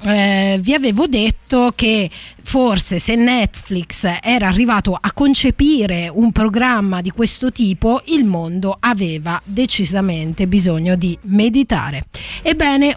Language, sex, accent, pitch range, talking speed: Italian, female, native, 205-255 Hz, 115 wpm